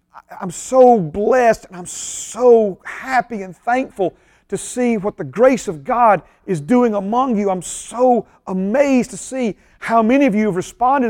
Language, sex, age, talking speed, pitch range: English, male, 40-59, 170 wpm, 185-250 Hz